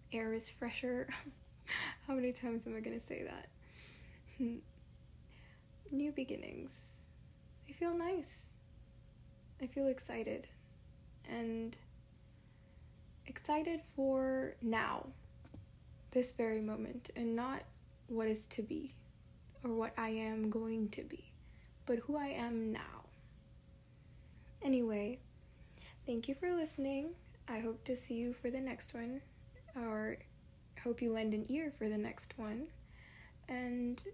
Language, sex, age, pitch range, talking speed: English, female, 10-29, 230-280 Hz, 125 wpm